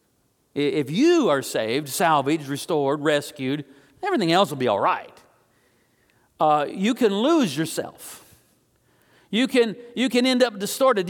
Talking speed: 130 wpm